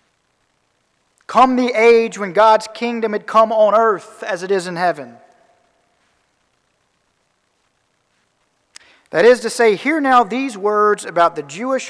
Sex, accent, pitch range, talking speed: male, American, 190-235 Hz, 130 wpm